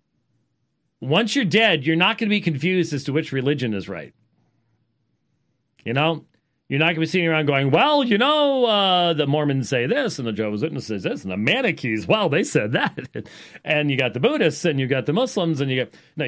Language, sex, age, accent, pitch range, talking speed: English, male, 40-59, American, 140-195 Hz, 220 wpm